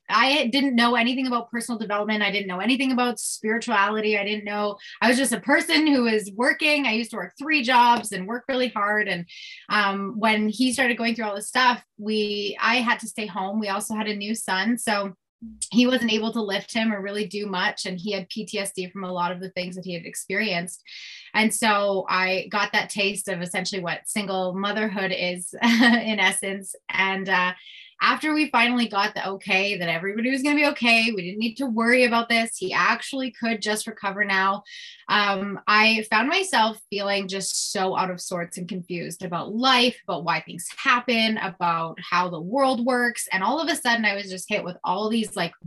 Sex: female